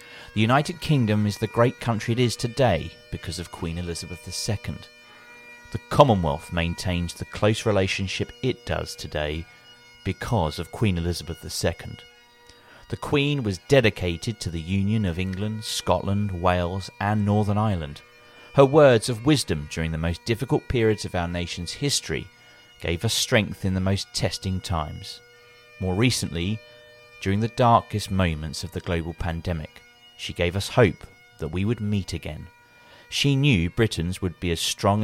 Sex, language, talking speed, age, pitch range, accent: male, English, 155 wpm, 40-59, 85-120 Hz, British